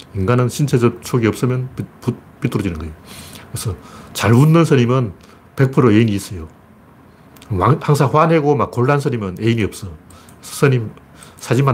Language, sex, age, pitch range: Korean, male, 40-59, 105-145 Hz